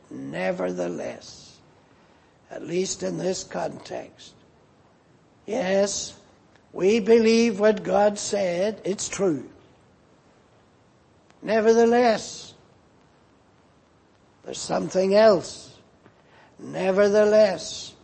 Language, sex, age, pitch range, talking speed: English, male, 60-79, 175-205 Hz, 65 wpm